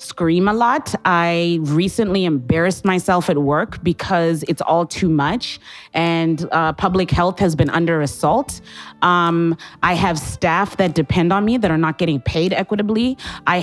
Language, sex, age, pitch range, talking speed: English, female, 30-49, 160-195 Hz, 165 wpm